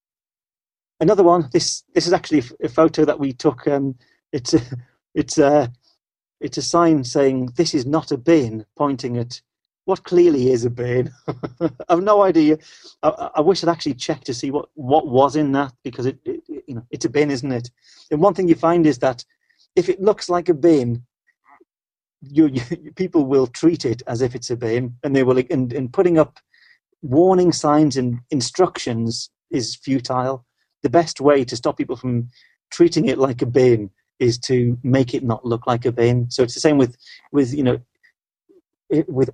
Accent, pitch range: British, 125-160 Hz